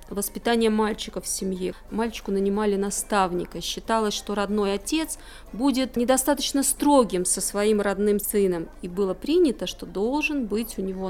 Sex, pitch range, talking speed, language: female, 195-245 Hz, 140 wpm, Russian